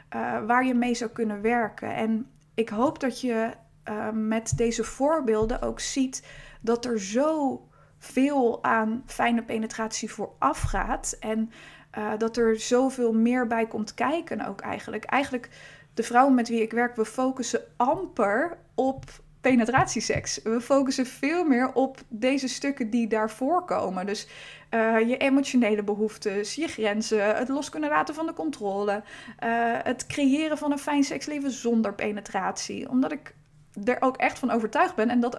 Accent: Dutch